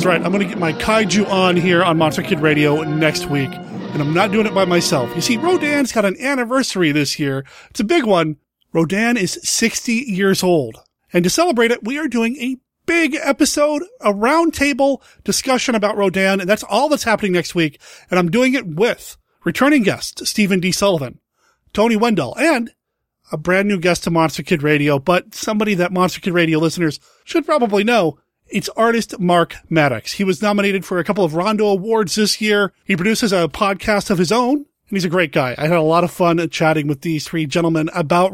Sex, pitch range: male, 165-215 Hz